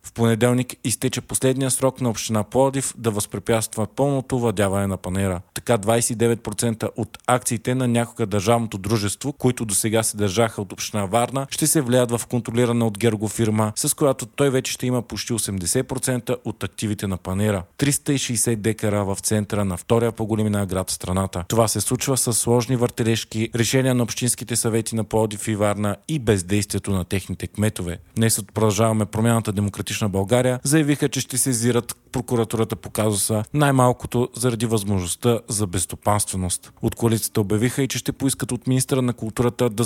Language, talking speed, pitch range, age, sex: Bulgarian, 165 wpm, 105-125 Hz, 40-59, male